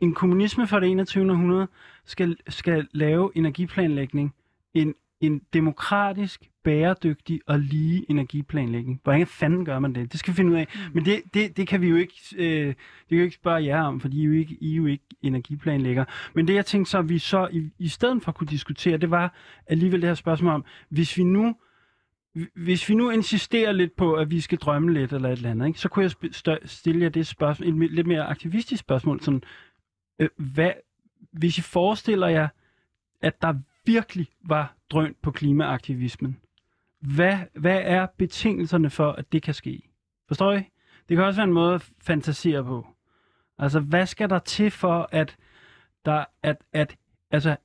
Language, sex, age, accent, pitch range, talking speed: Danish, male, 20-39, native, 145-180 Hz, 185 wpm